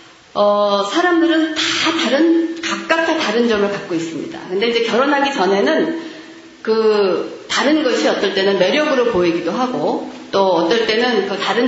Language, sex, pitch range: Korean, female, 190-315 Hz